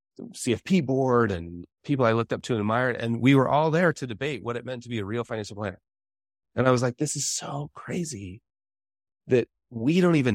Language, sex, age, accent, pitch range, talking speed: English, male, 30-49, American, 100-130 Hz, 220 wpm